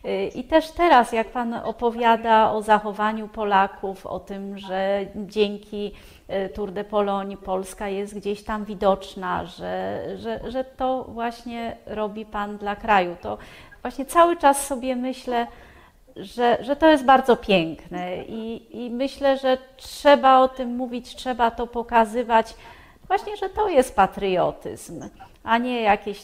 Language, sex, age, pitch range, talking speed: Polish, female, 30-49, 195-255 Hz, 135 wpm